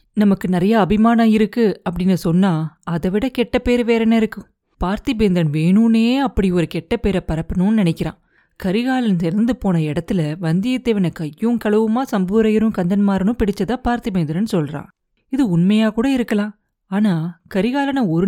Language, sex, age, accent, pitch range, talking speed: Tamil, female, 30-49, native, 175-225 Hz, 120 wpm